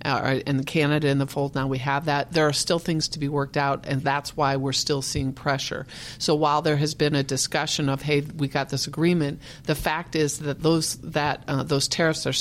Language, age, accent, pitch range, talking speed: English, 50-69, American, 135-160 Hz, 230 wpm